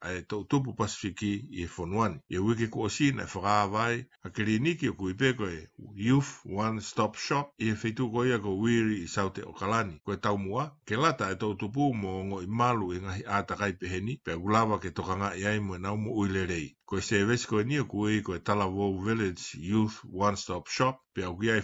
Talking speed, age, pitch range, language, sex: 170 wpm, 60-79, 95-120 Hz, English, male